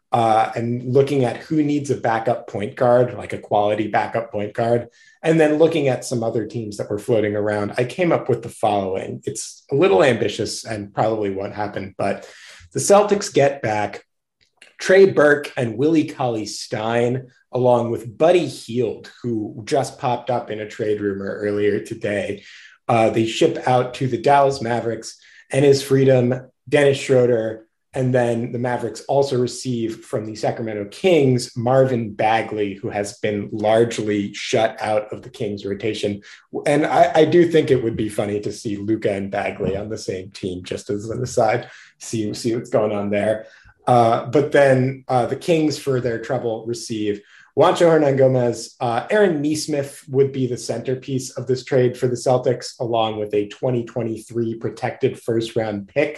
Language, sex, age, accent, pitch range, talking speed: English, male, 30-49, American, 110-130 Hz, 175 wpm